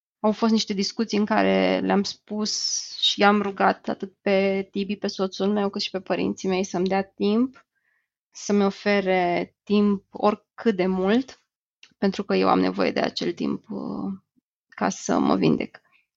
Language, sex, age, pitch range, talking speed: Romanian, female, 20-39, 195-230 Hz, 160 wpm